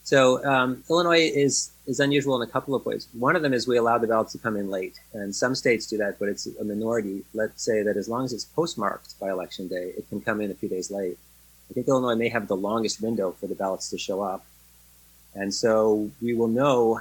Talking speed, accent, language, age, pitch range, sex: 245 wpm, American, English, 30-49, 95-115 Hz, male